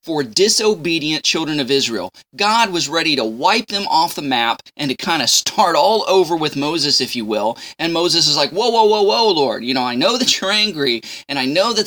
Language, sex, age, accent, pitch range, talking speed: English, male, 20-39, American, 140-190 Hz, 235 wpm